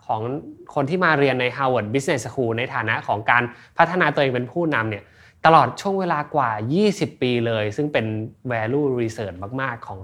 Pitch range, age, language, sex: 115-155 Hz, 20-39, Thai, male